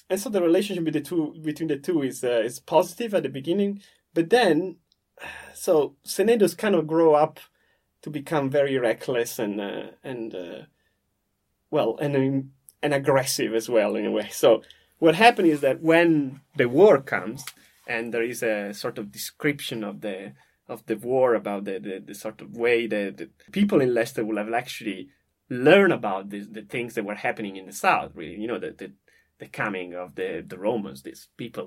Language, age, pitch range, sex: English, 30-49, 115-165 Hz, male